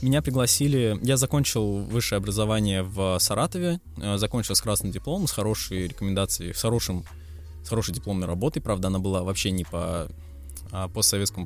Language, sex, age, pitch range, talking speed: Russian, male, 20-39, 90-115 Hz, 150 wpm